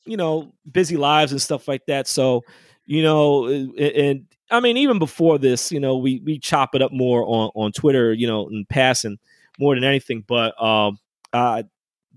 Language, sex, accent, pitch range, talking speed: English, male, American, 115-155 Hz, 195 wpm